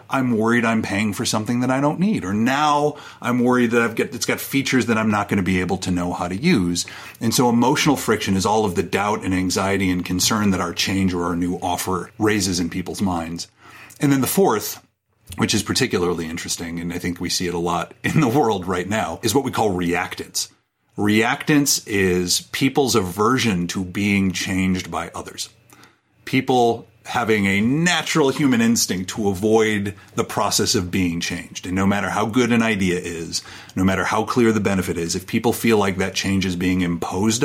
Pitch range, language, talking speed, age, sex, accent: 90-115 Hz, English, 205 wpm, 30-49, male, American